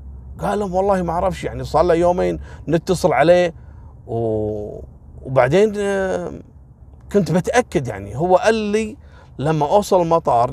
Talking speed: 120 wpm